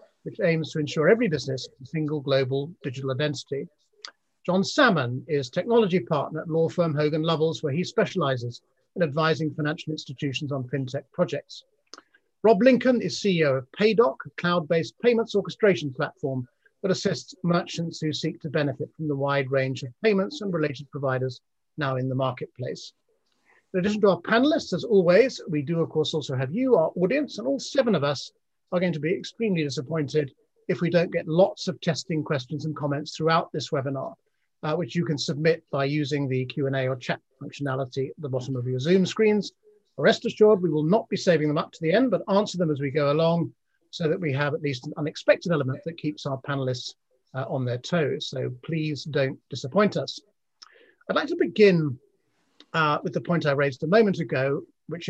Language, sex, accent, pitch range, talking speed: English, male, British, 145-185 Hz, 190 wpm